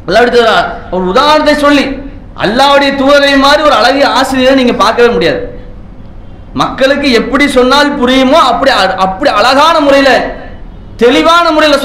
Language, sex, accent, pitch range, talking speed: English, male, Indian, 225-275 Hz, 115 wpm